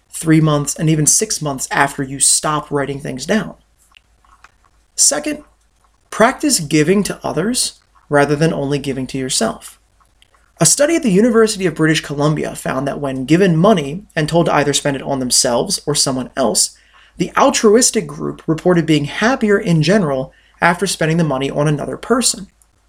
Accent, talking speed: American, 165 wpm